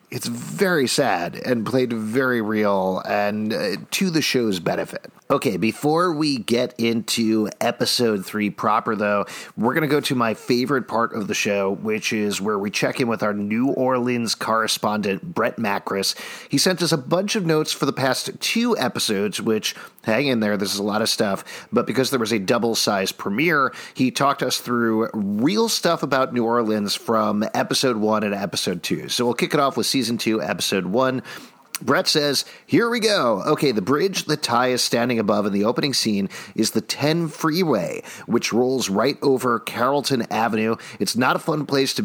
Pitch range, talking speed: 110-140 Hz, 190 wpm